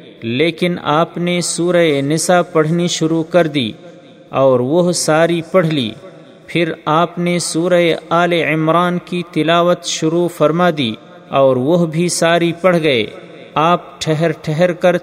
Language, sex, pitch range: Urdu, male, 155-175 Hz